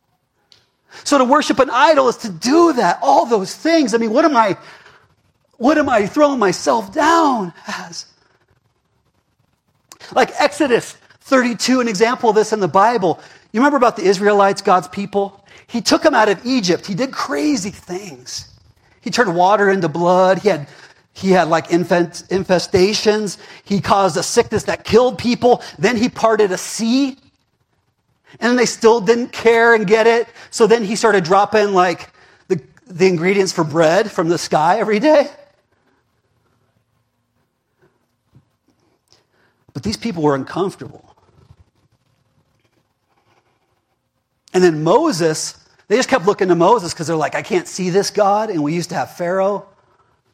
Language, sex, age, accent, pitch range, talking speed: English, male, 40-59, American, 165-230 Hz, 150 wpm